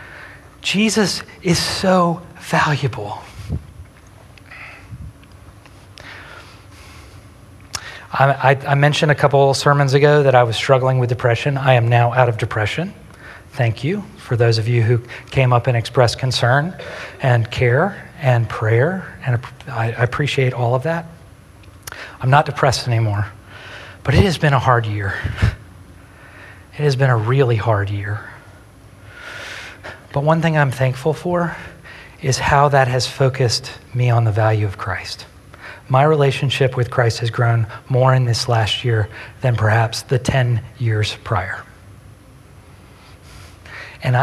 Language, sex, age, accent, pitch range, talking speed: English, male, 40-59, American, 105-140 Hz, 135 wpm